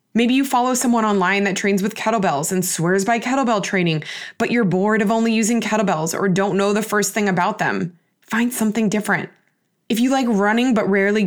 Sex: female